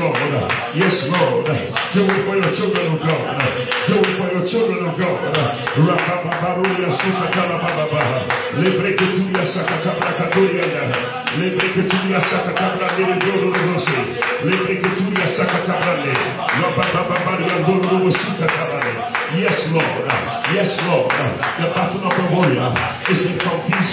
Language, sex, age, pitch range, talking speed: English, male, 50-69, 165-190 Hz, 80 wpm